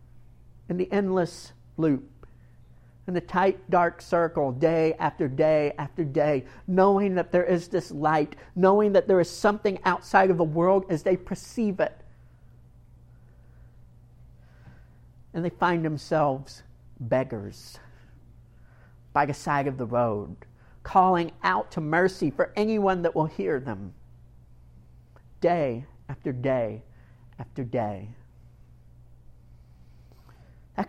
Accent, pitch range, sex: American, 120-180 Hz, male